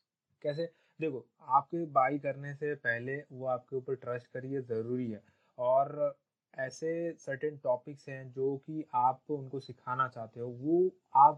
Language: Hindi